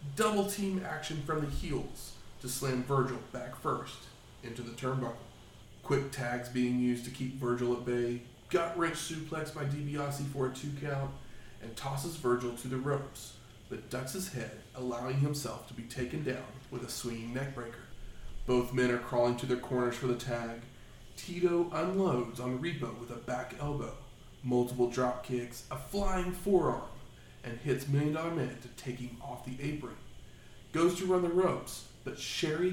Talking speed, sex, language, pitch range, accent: 165 wpm, male, English, 120-145 Hz, American